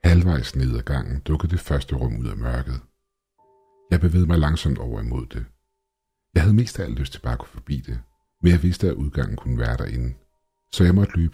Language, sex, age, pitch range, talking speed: Danish, male, 60-79, 65-90 Hz, 215 wpm